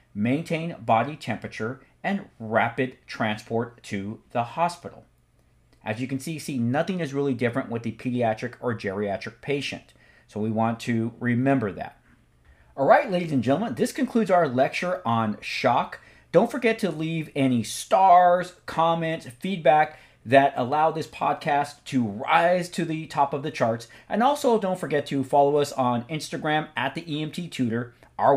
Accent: American